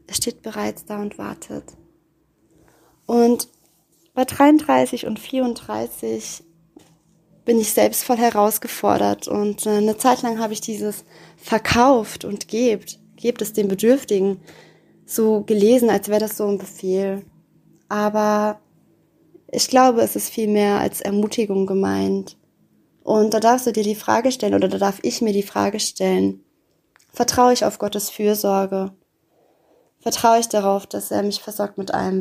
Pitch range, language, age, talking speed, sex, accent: 185-220 Hz, German, 20-39, 145 wpm, female, German